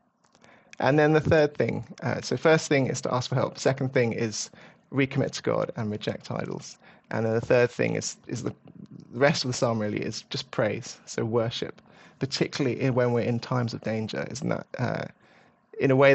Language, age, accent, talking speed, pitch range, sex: English, 30-49, British, 205 wpm, 115-135 Hz, male